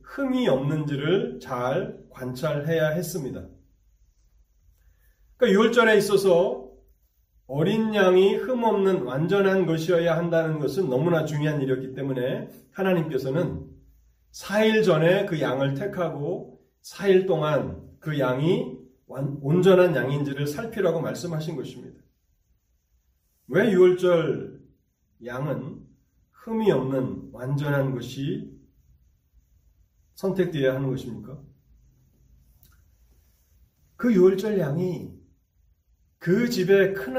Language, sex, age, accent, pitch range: Korean, male, 30-49, native, 125-190 Hz